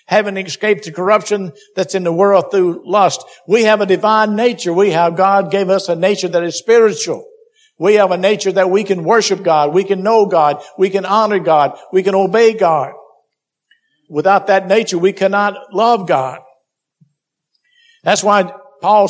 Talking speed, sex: 175 wpm, male